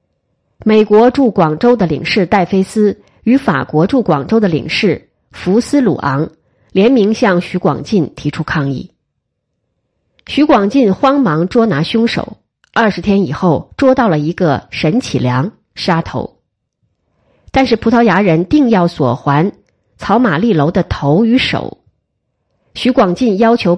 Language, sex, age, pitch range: Chinese, female, 30-49, 160-230 Hz